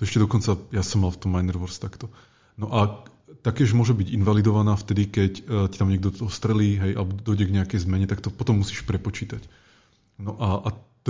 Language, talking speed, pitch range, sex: Czech, 195 wpm, 95-115 Hz, male